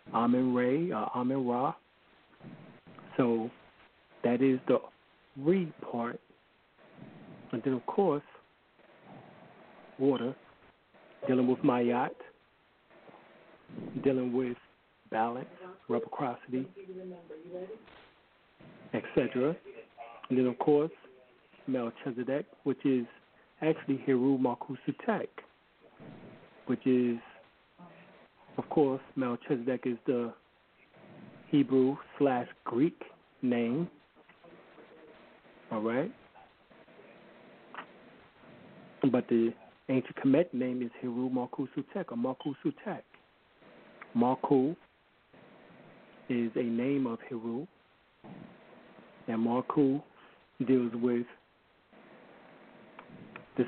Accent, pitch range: American, 120-140 Hz